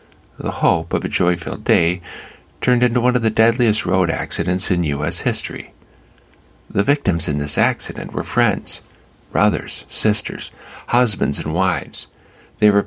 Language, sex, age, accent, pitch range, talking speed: English, male, 50-69, American, 90-110 Hz, 145 wpm